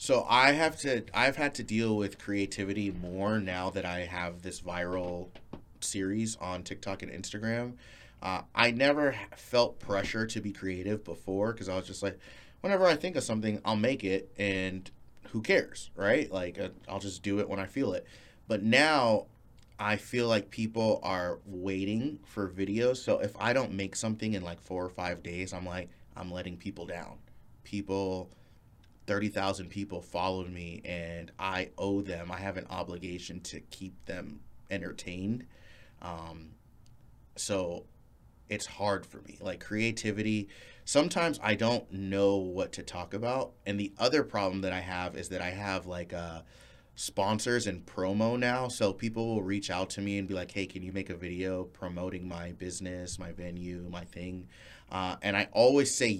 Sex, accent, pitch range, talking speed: male, American, 90-110 Hz, 175 wpm